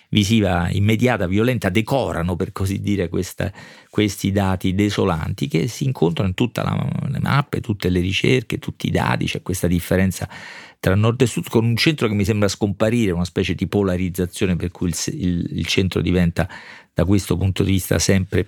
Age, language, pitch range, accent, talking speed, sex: 40-59, Italian, 95-115 Hz, native, 170 wpm, male